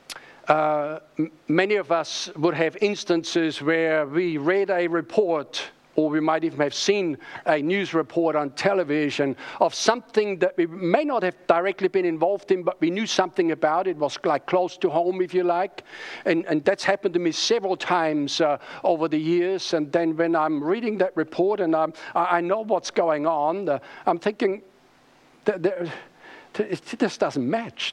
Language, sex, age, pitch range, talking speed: English, male, 50-69, 155-195 Hz, 185 wpm